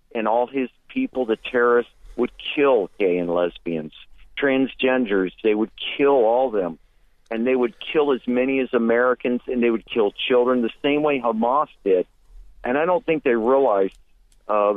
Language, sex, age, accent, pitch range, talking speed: English, male, 50-69, American, 115-140 Hz, 170 wpm